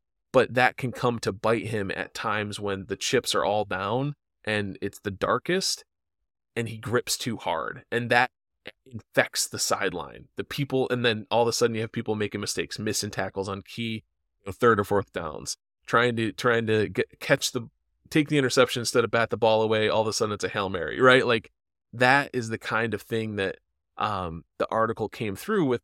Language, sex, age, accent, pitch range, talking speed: English, male, 20-39, American, 105-125 Hz, 200 wpm